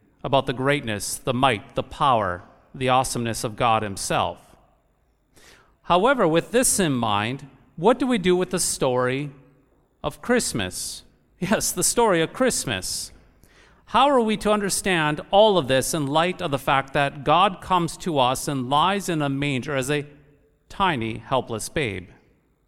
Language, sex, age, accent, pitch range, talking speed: English, male, 40-59, American, 125-165 Hz, 155 wpm